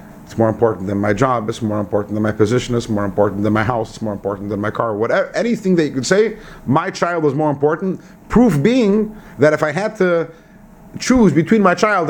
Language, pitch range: English, 115-170 Hz